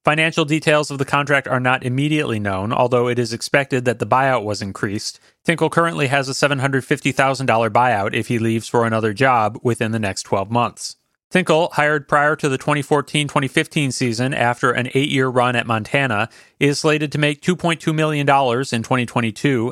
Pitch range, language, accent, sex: 120-150 Hz, English, American, male